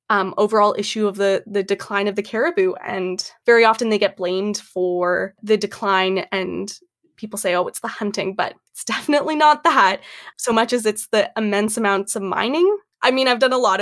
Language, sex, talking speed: English, female, 200 wpm